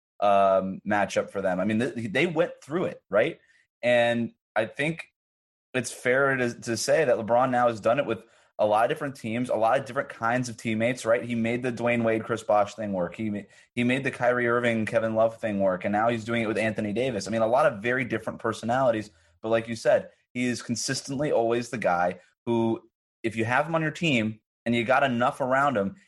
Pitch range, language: 110-135 Hz, English